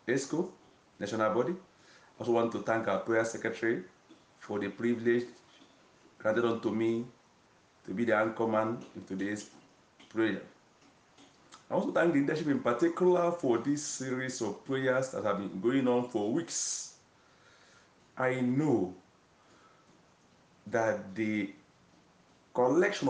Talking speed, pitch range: 125 wpm, 115-145 Hz